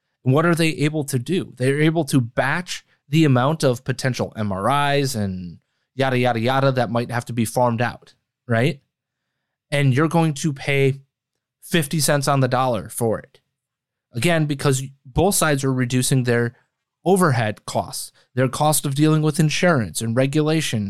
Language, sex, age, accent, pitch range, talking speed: English, male, 30-49, American, 125-155 Hz, 160 wpm